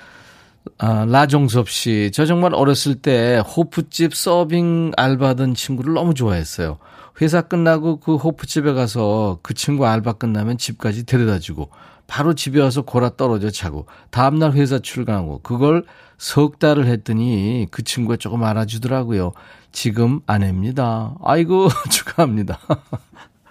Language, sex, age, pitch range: Korean, male, 40-59, 110-150 Hz